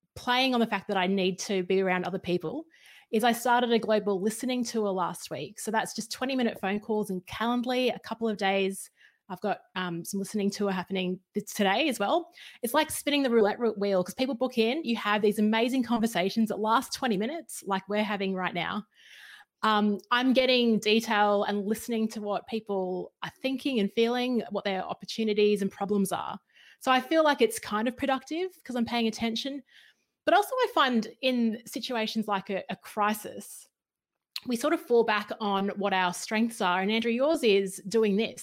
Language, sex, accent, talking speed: English, female, Australian, 195 wpm